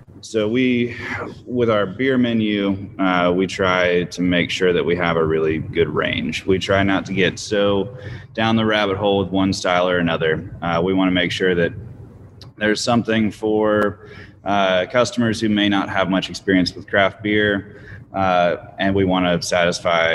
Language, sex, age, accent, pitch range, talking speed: English, male, 20-39, American, 90-105 Hz, 175 wpm